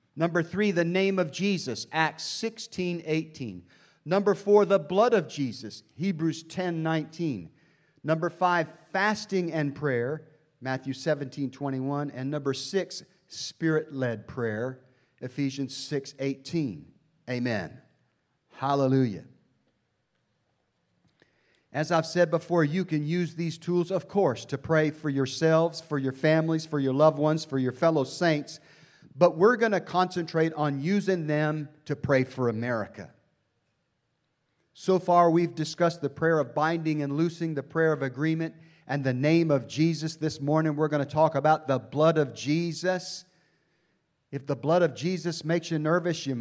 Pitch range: 140-175 Hz